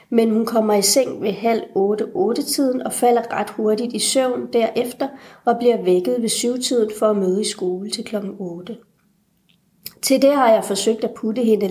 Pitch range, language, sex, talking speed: 205-245 Hz, Danish, female, 190 wpm